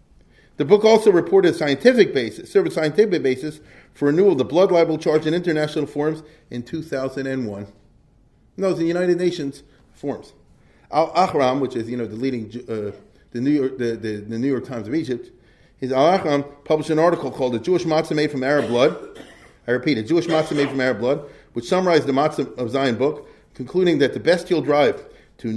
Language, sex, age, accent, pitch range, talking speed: English, male, 40-59, American, 130-175 Hz, 205 wpm